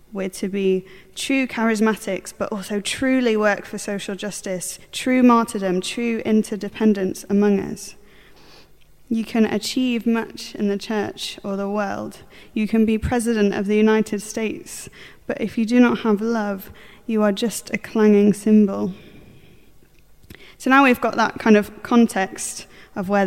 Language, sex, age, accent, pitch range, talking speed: English, female, 10-29, British, 190-220 Hz, 150 wpm